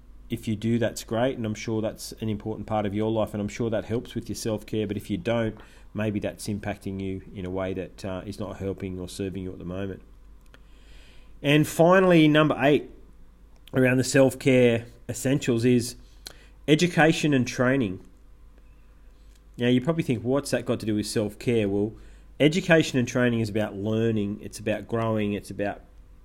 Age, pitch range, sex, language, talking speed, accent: 40-59, 105-125 Hz, male, English, 185 wpm, Australian